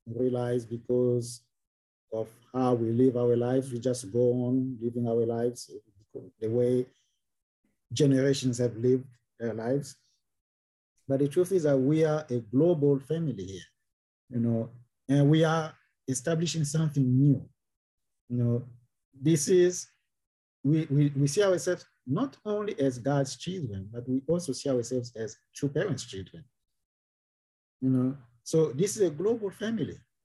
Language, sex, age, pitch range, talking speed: English, male, 50-69, 120-155 Hz, 145 wpm